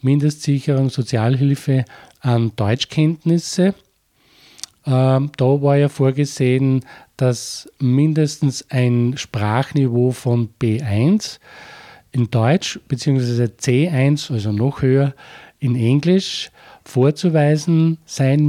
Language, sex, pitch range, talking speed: German, male, 120-145 Hz, 80 wpm